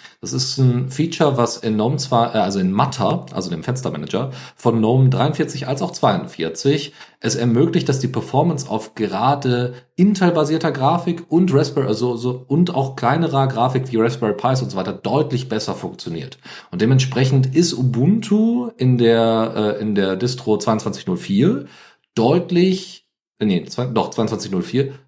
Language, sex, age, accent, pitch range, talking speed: German, male, 40-59, German, 105-140 Hz, 150 wpm